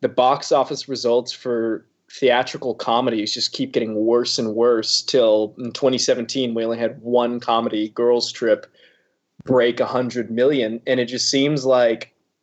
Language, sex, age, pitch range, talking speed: English, male, 20-39, 115-135 Hz, 155 wpm